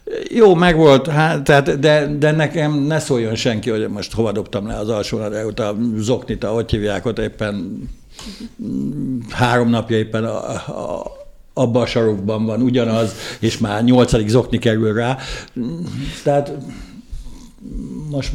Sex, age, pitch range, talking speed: male, 60-79, 110-130 Hz, 135 wpm